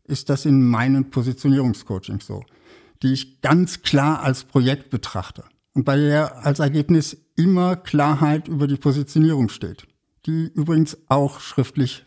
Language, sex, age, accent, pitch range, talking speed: German, male, 60-79, German, 120-155 Hz, 140 wpm